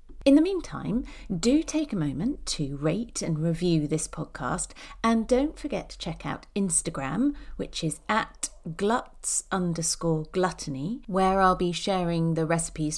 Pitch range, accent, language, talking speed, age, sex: 150-240 Hz, British, English, 150 wpm, 40-59, female